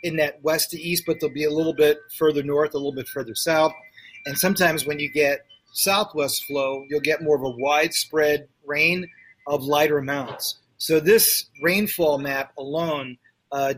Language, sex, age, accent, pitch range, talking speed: English, male, 30-49, American, 140-170 Hz, 180 wpm